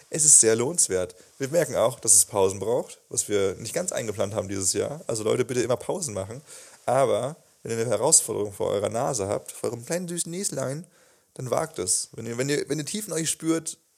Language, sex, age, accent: German, male, 30-49, German